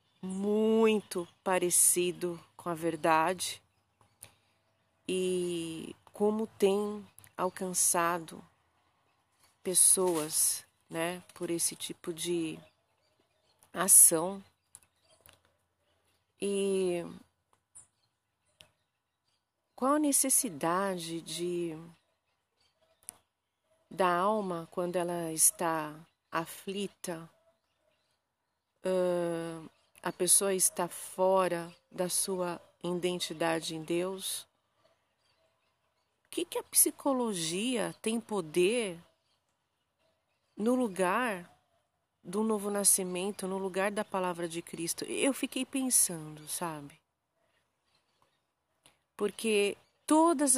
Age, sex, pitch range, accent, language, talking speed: 40-59, female, 165-205 Hz, Brazilian, Portuguese, 70 wpm